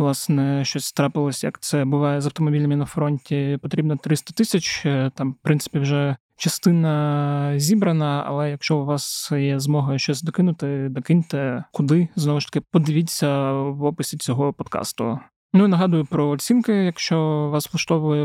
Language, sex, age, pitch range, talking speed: Ukrainian, male, 30-49, 140-165 Hz, 150 wpm